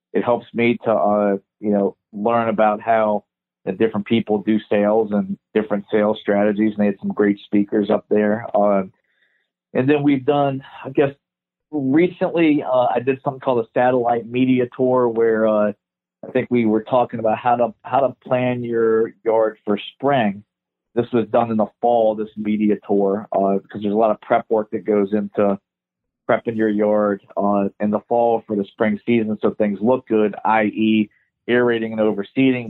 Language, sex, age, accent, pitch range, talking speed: English, male, 40-59, American, 105-115 Hz, 185 wpm